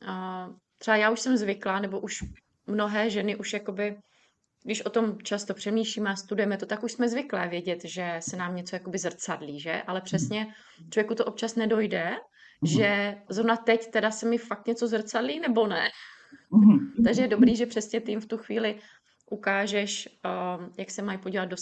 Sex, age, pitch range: female, 30-49, 185-225 Hz